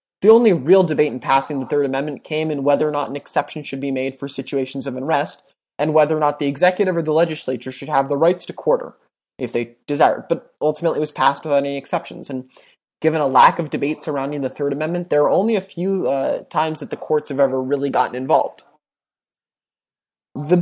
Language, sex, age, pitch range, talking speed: English, male, 20-39, 135-165 Hz, 220 wpm